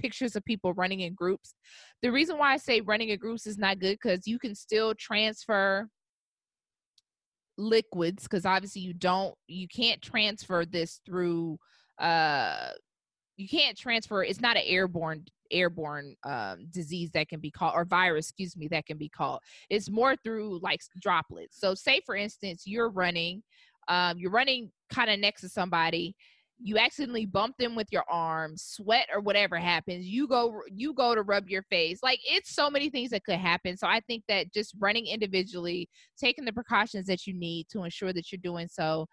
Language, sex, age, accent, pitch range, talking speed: English, female, 20-39, American, 175-215 Hz, 185 wpm